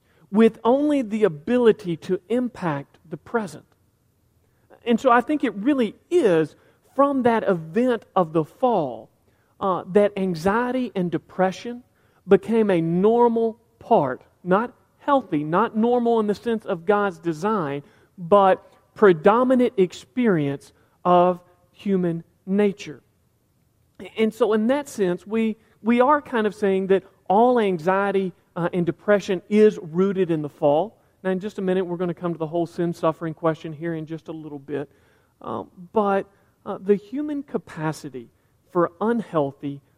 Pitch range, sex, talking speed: 160-215 Hz, male, 145 wpm